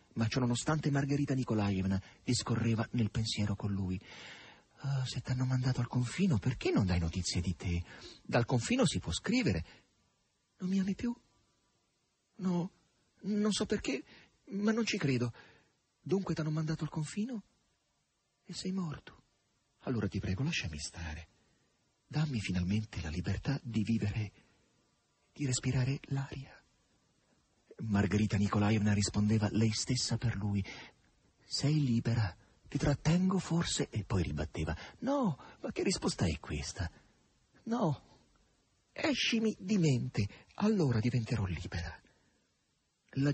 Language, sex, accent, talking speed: Italian, male, native, 125 wpm